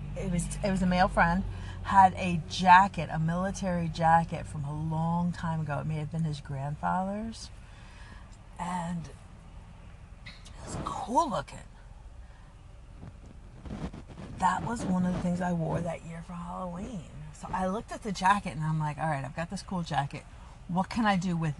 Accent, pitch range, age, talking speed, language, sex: American, 145-180 Hz, 40-59, 170 wpm, English, female